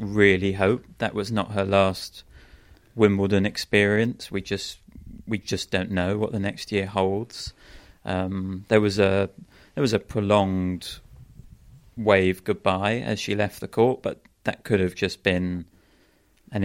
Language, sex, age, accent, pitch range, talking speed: English, male, 30-49, British, 90-105 Hz, 150 wpm